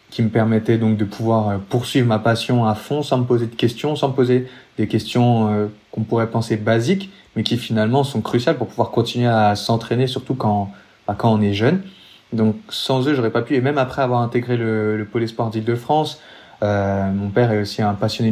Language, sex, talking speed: French, male, 210 wpm